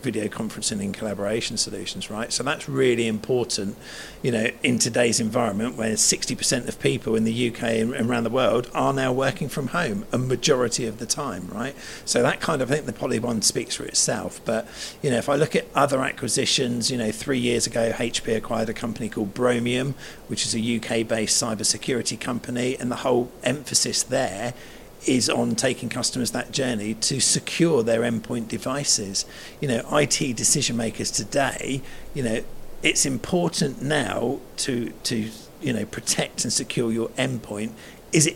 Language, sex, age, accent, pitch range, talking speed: English, male, 50-69, British, 115-125 Hz, 175 wpm